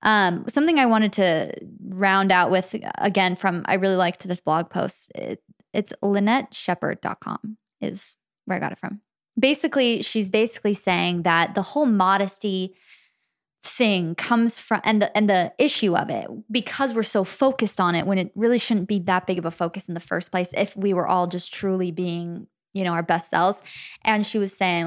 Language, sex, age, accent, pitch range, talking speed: English, female, 20-39, American, 185-220 Hz, 190 wpm